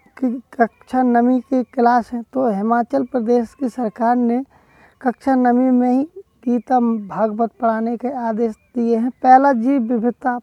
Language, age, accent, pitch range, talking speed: English, 20-39, Indian, 230-260 Hz, 145 wpm